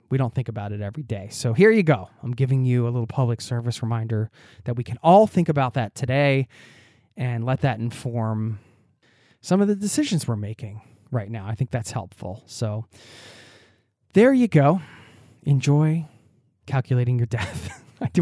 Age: 20-39